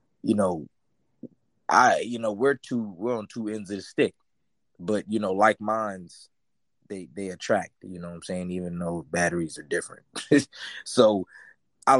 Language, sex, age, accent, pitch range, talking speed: English, male, 20-39, American, 100-130 Hz, 170 wpm